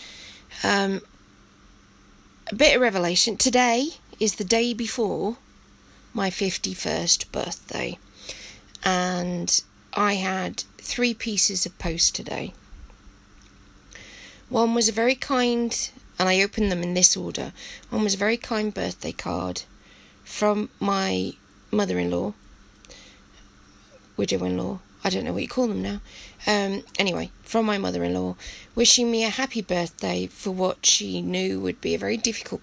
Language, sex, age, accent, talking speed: English, female, 20-39, British, 130 wpm